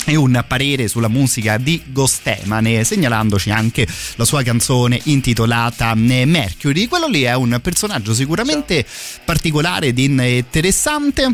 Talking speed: 120 wpm